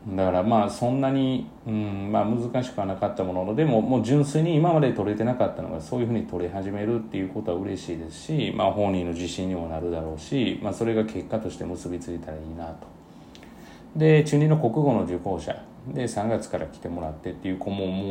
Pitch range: 85-120 Hz